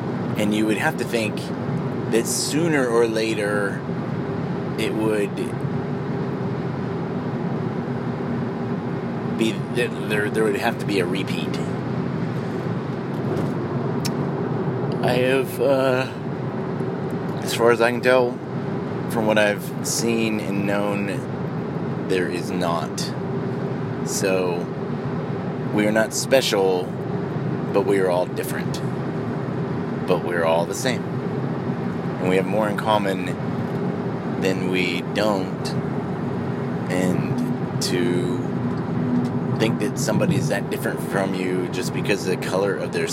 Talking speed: 110 wpm